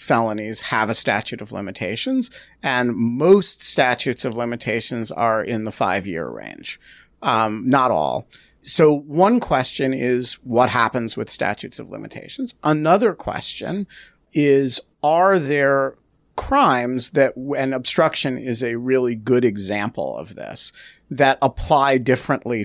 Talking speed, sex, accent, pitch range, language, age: 125 wpm, male, American, 110-145 Hz, English, 50-69